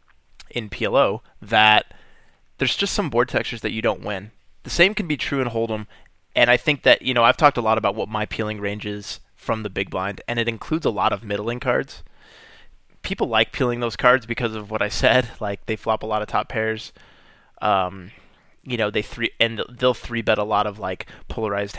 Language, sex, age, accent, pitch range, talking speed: English, male, 20-39, American, 105-125 Hz, 215 wpm